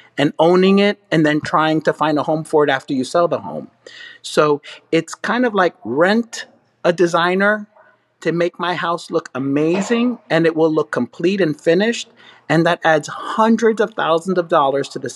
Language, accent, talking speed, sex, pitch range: English, American, 190 wpm, male, 155-200 Hz